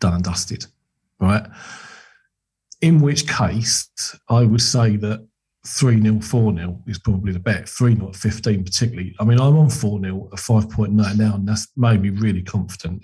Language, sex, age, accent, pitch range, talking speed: English, male, 40-59, British, 105-135 Hz, 160 wpm